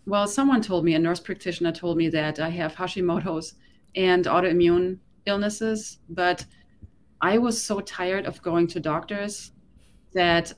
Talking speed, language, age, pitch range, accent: 145 wpm, English, 30-49, 165-200 Hz, German